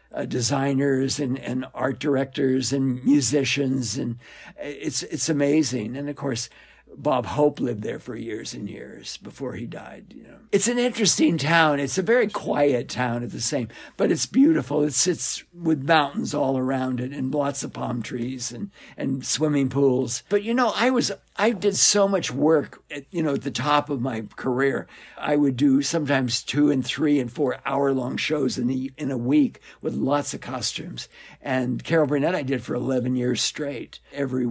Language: English